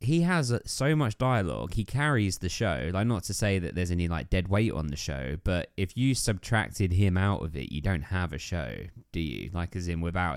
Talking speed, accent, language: 235 wpm, British, English